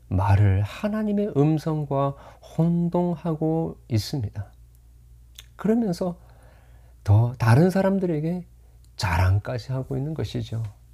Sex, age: male, 40-59